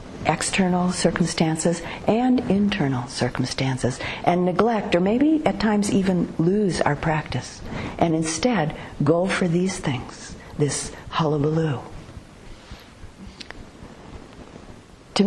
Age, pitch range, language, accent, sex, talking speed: 50-69, 145-190 Hz, English, American, female, 95 wpm